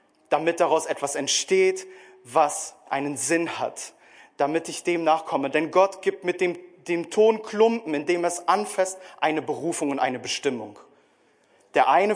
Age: 30-49